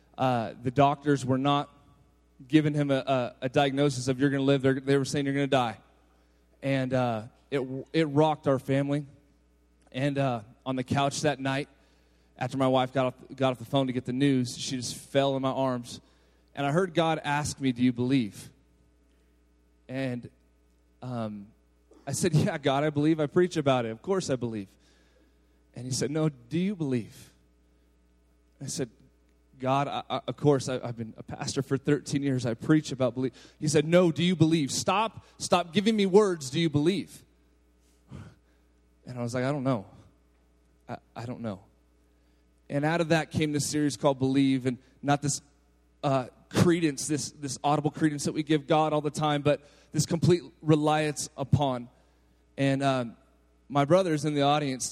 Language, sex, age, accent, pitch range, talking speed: English, male, 30-49, American, 110-150 Hz, 185 wpm